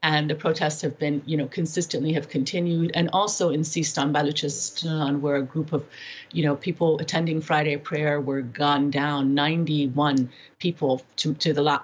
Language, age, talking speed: English, 30-49, 170 wpm